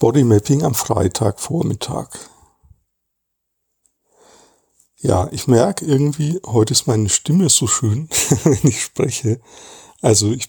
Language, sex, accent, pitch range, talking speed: German, male, German, 115-145 Hz, 105 wpm